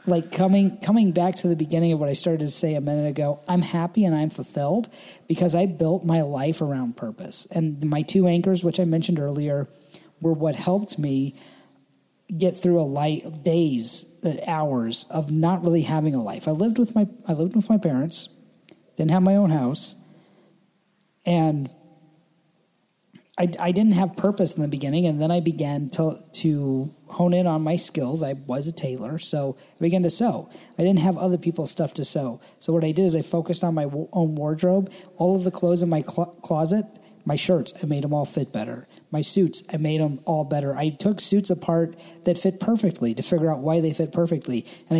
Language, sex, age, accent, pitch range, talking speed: English, male, 40-59, American, 155-185 Hz, 200 wpm